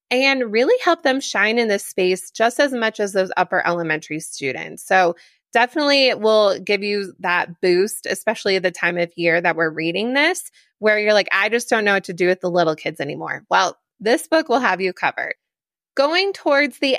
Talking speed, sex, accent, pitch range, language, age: 210 wpm, female, American, 190-250 Hz, English, 20-39